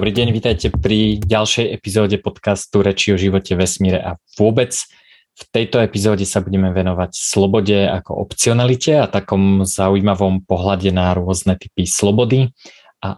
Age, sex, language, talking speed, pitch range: 20-39, male, Slovak, 140 wpm, 95-105 Hz